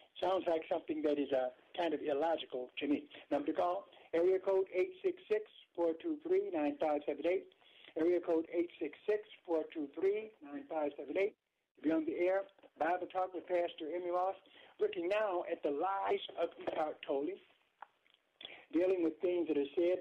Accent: American